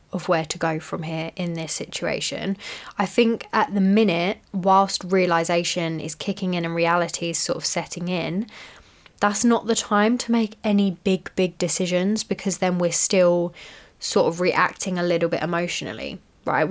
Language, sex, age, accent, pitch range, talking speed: English, female, 10-29, British, 175-210 Hz, 170 wpm